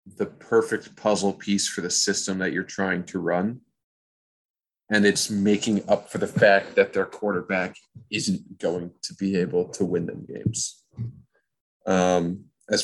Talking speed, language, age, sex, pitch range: 155 wpm, English, 30-49, male, 95-110 Hz